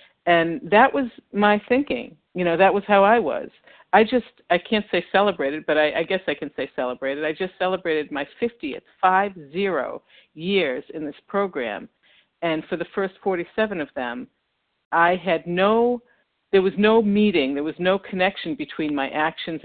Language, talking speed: English, 180 wpm